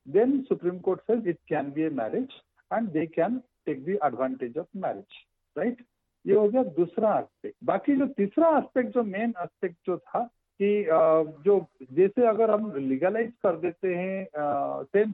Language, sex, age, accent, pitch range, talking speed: Hindi, male, 60-79, native, 155-220 Hz, 165 wpm